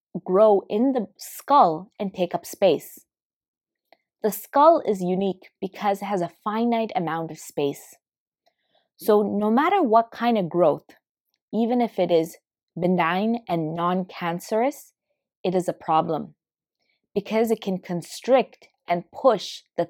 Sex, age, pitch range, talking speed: female, 20-39, 175-220 Hz, 135 wpm